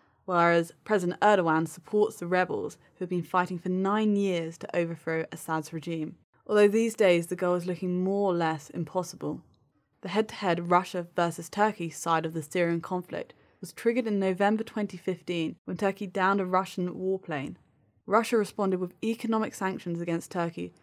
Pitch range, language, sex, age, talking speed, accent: 170-205 Hz, English, female, 20-39, 160 wpm, British